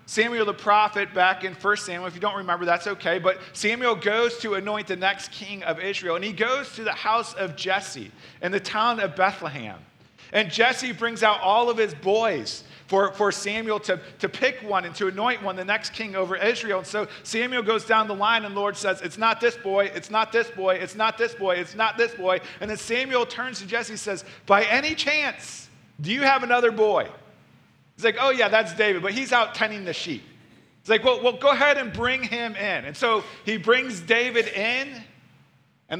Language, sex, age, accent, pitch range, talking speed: English, male, 40-59, American, 185-230 Hz, 220 wpm